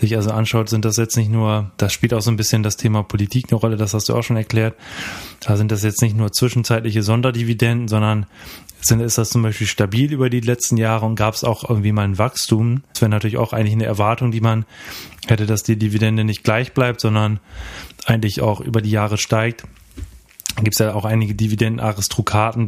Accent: German